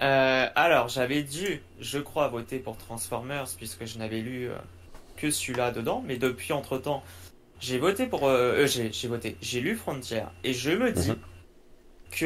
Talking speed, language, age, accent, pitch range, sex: 175 wpm, French, 20-39, French, 115-145 Hz, male